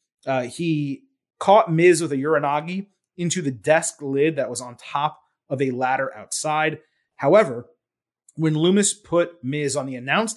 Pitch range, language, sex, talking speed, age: 130-175 Hz, English, male, 155 wpm, 30-49